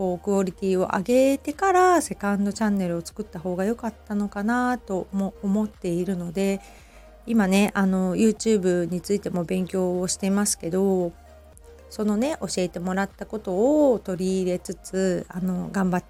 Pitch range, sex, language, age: 185-230 Hz, female, Japanese, 40-59